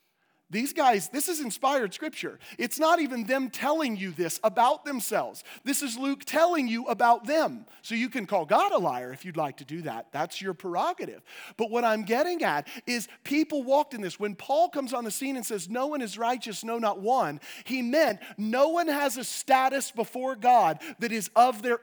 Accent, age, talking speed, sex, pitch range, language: American, 40-59, 210 wpm, male, 195-265 Hz, English